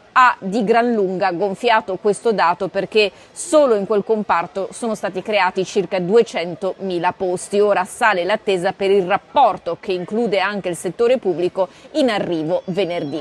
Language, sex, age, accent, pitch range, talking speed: Italian, female, 30-49, native, 195-235 Hz, 150 wpm